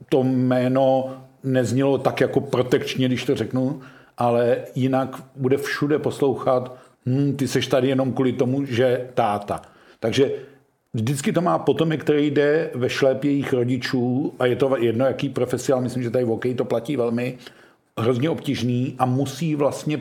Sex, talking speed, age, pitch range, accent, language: male, 160 wpm, 50-69, 125-140 Hz, native, Czech